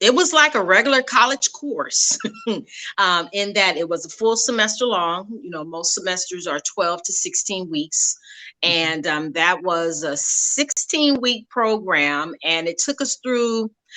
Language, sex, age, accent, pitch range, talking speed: English, female, 40-59, American, 175-255 Hz, 160 wpm